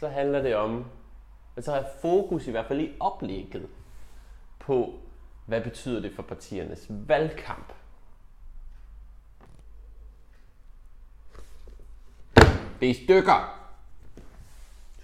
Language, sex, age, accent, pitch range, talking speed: Danish, male, 20-39, native, 95-125 Hz, 105 wpm